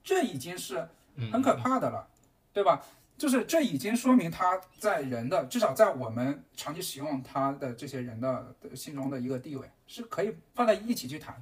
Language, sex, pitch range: Chinese, male, 125-170 Hz